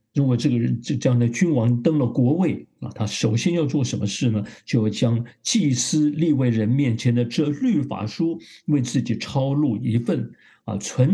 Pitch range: 115-150 Hz